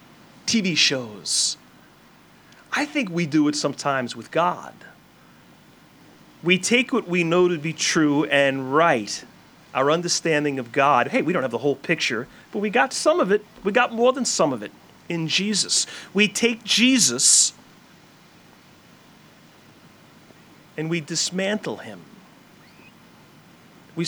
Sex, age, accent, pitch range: male, 40-59, American, 165-225 Hz